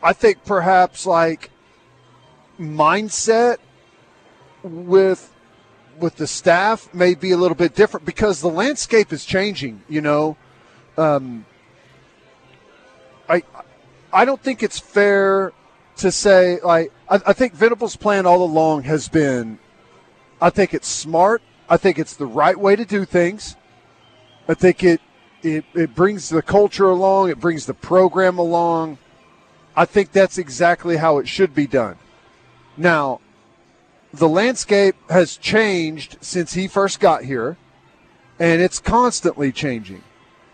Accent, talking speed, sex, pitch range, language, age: American, 135 wpm, male, 155-190 Hz, English, 40-59